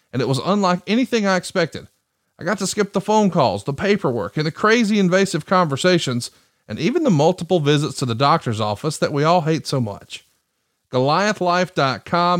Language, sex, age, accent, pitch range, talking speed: English, male, 40-59, American, 120-175 Hz, 180 wpm